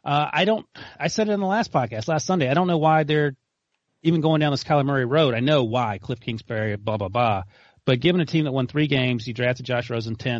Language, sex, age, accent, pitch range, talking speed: English, male, 30-49, American, 120-155 Hz, 255 wpm